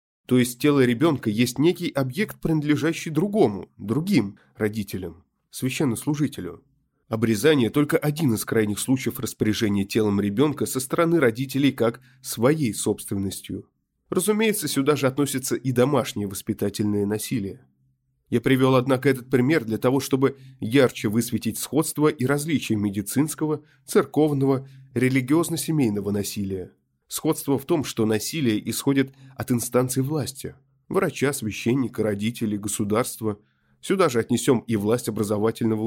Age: 20-39